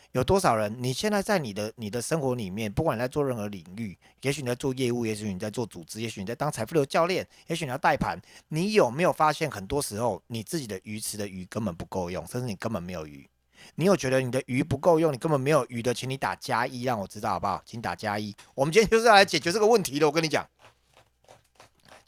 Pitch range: 105-155 Hz